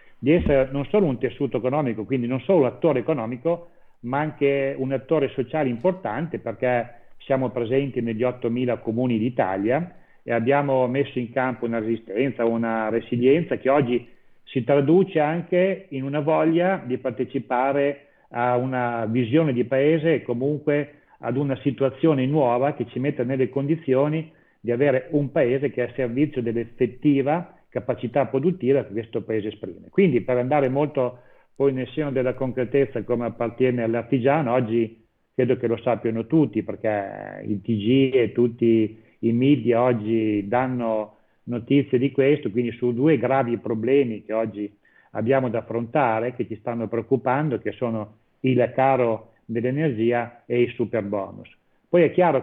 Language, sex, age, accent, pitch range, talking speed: Italian, male, 40-59, native, 115-140 Hz, 150 wpm